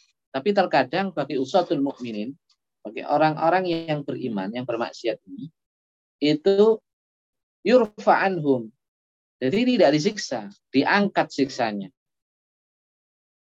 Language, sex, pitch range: Indonesian, male, 115-185 Hz